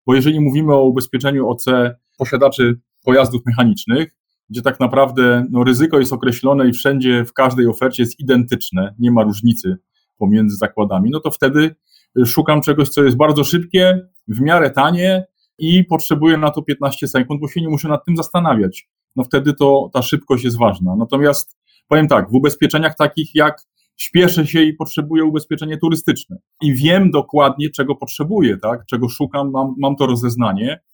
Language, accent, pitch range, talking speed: Polish, native, 120-150 Hz, 165 wpm